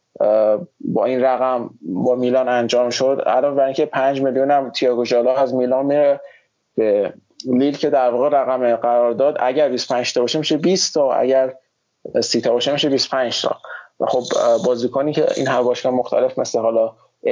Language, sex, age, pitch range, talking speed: Persian, male, 20-39, 125-150 Hz, 175 wpm